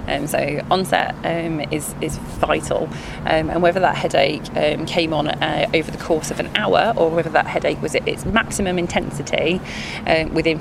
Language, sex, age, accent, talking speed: English, female, 20-39, British, 185 wpm